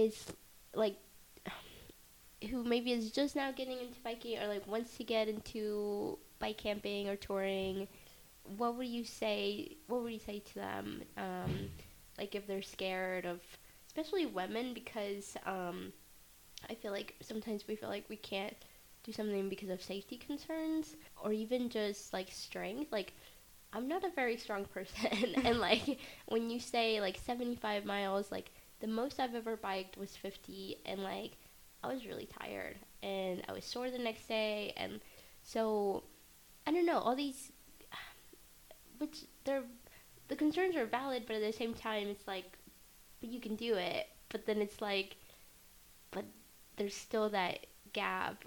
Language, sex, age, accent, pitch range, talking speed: English, female, 10-29, American, 195-245 Hz, 160 wpm